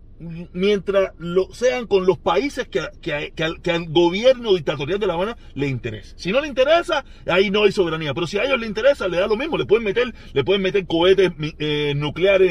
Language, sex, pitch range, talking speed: Spanish, male, 165-255 Hz, 215 wpm